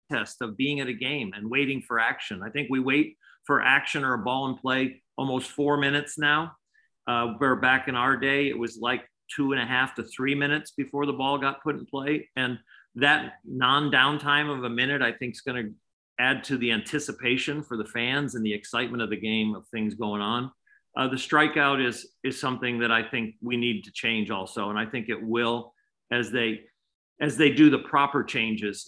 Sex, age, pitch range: male, 50-69, 120-145 Hz